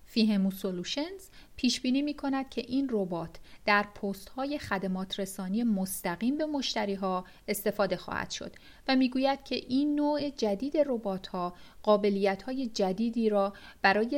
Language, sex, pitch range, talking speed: Persian, female, 195-240 Hz, 140 wpm